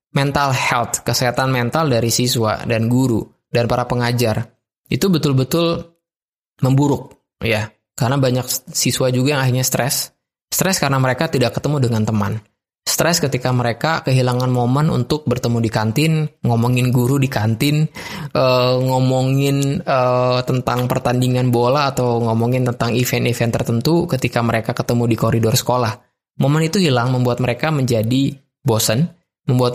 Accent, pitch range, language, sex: native, 115-140 Hz, Indonesian, male